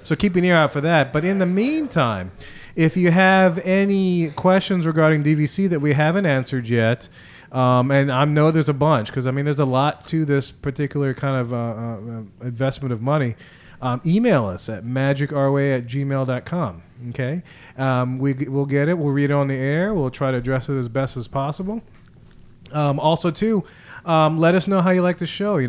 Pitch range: 130-170 Hz